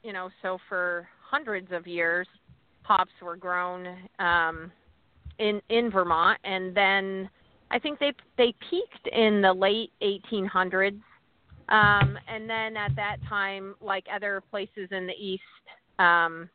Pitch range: 170-200 Hz